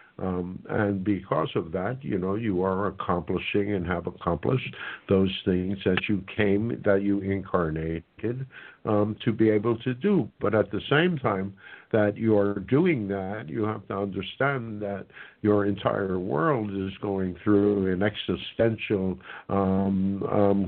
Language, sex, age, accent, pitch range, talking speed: English, male, 60-79, American, 95-115 Hz, 150 wpm